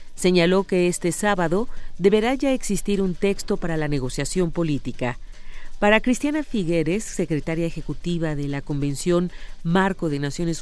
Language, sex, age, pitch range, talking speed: Spanish, female, 40-59, 160-205 Hz, 135 wpm